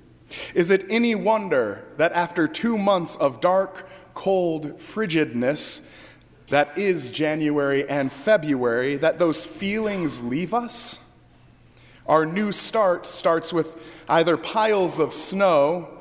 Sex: male